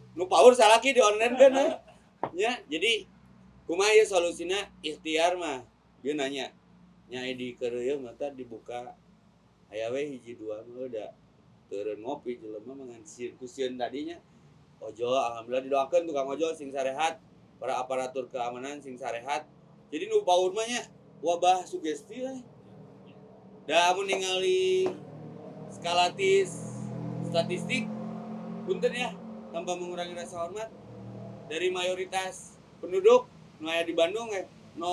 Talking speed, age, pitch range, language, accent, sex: 125 wpm, 30-49, 145-210 Hz, Indonesian, native, male